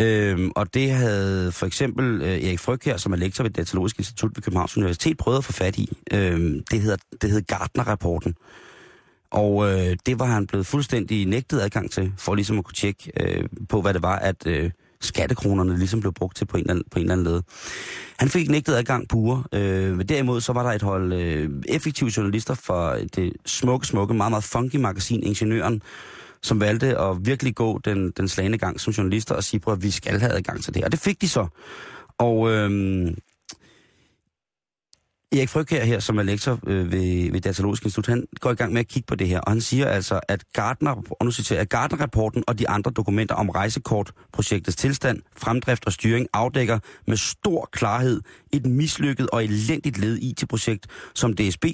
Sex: male